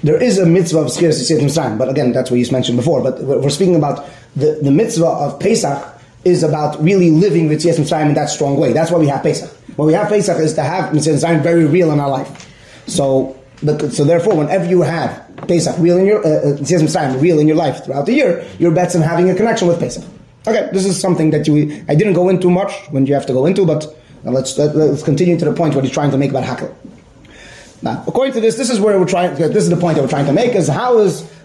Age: 30-49